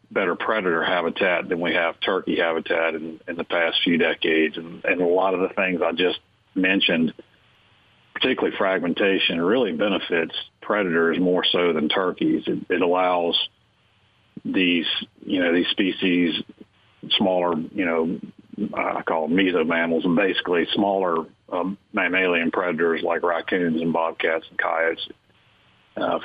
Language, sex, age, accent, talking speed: English, male, 50-69, American, 140 wpm